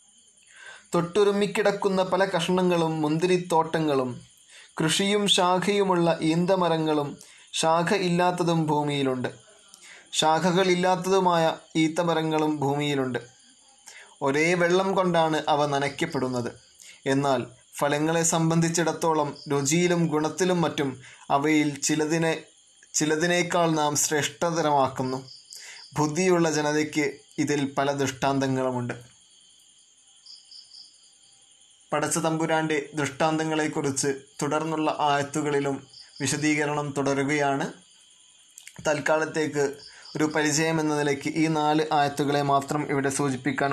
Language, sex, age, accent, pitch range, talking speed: Malayalam, male, 20-39, native, 140-165 Hz, 75 wpm